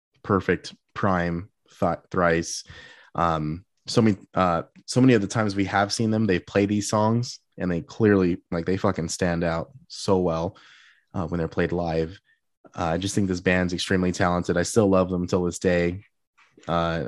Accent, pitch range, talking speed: American, 85-100 Hz, 185 wpm